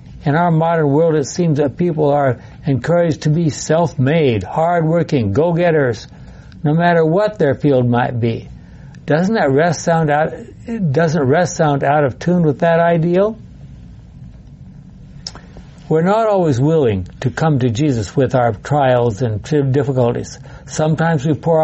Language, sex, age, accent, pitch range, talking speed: English, male, 60-79, American, 125-160 Hz, 145 wpm